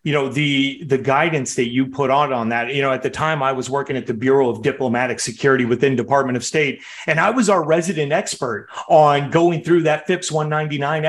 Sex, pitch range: male, 135-165 Hz